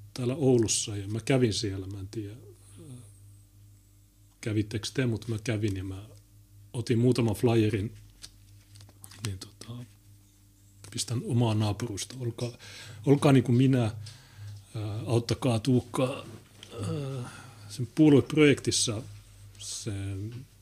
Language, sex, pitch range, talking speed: Finnish, male, 100-115 Hz, 95 wpm